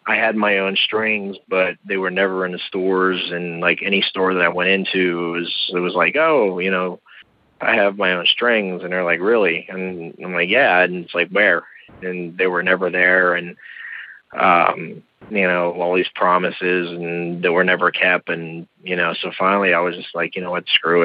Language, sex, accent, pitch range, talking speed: English, male, American, 85-95 Hz, 210 wpm